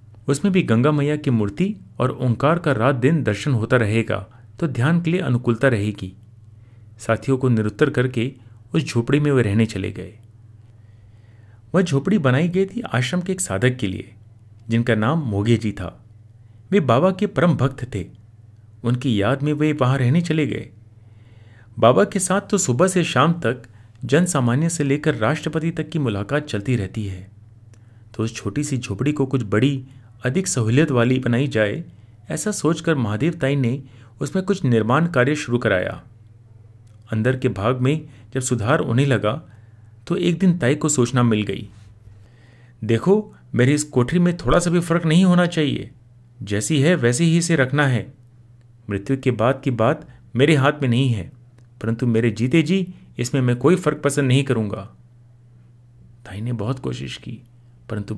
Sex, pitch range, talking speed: male, 110-145 Hz, 170 wpm